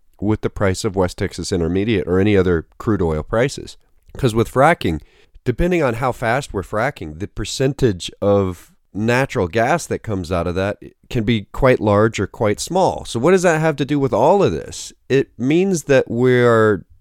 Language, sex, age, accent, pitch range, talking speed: English, male, 40-59, American, 85-115 Hz, 190 wpm